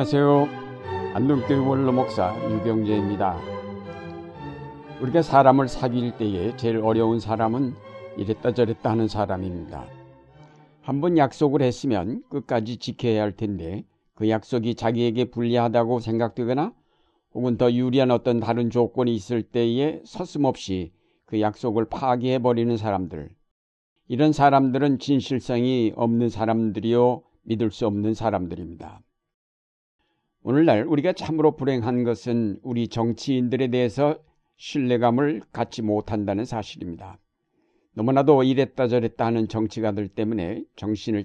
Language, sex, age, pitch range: Korean, male, 60-79, 105-130 Hz